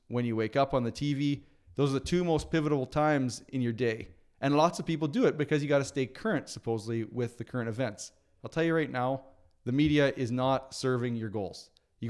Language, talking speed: English, 235 wpm